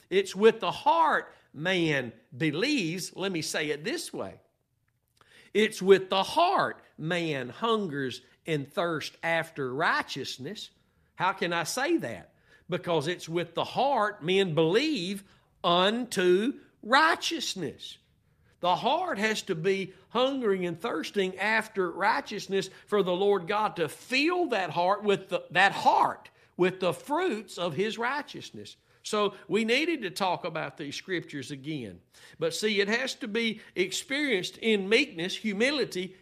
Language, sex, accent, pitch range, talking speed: English, male, American, 170-220 Hz, 135 wpm